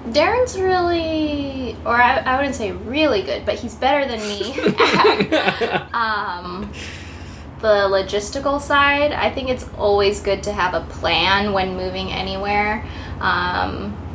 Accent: American